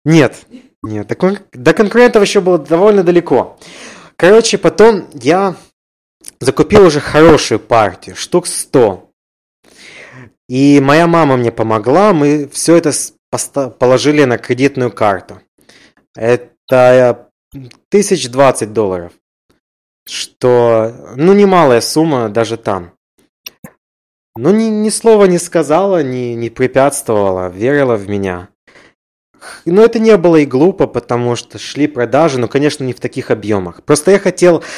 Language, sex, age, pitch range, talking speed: Ukrainian, male, 20-39, 120-165 Hz, 115 wpm